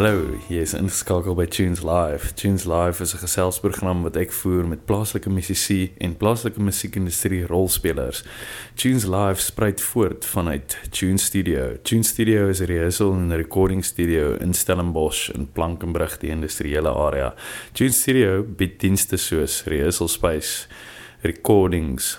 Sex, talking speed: male, 140 wpm